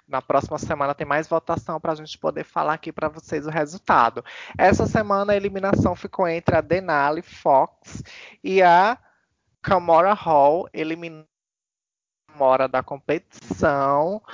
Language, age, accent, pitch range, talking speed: Portuguese, 20-39, Brazilian, 130-160 Hz, 140 wpm